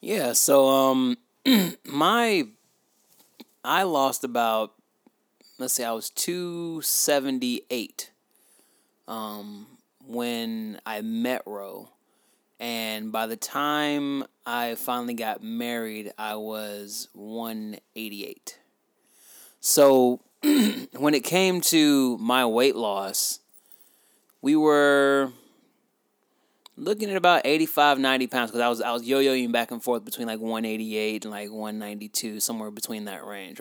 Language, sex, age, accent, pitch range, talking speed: English, male, 20-39, American, 110-140 Hz, 110 wpm